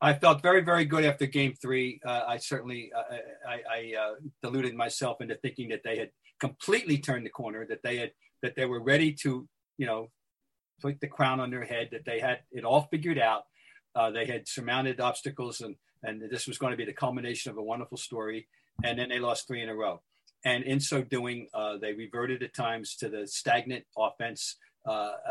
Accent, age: American, 50-69